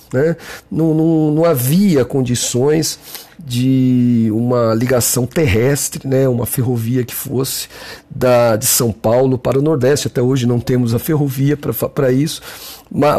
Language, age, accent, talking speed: Portuguese, 50-69, Brazilian, 130 wpm